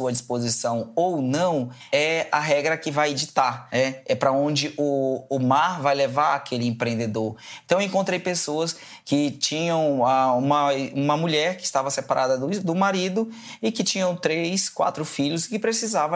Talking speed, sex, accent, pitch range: 165 wpm, male, Brazilian, 140-175 Hz